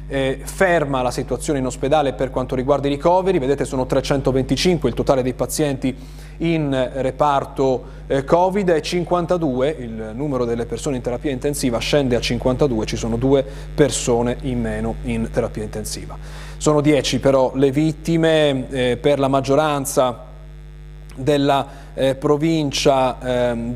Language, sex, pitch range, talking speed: Italian, male, 125-155 Hz, 145 wpm